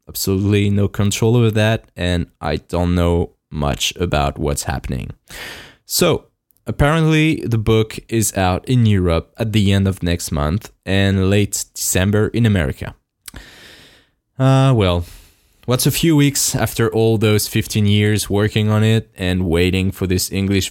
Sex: male